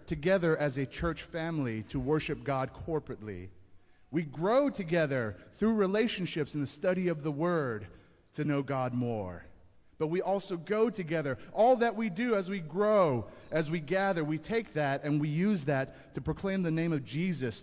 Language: English